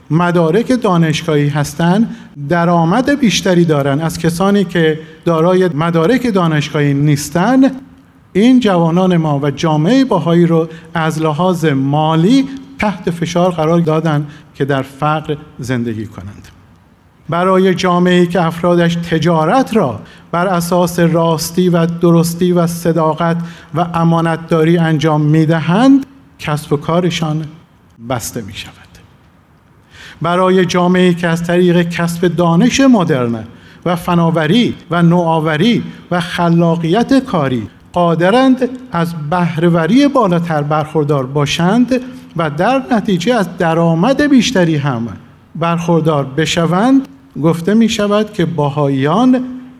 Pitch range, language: 150-185 Hz, Persian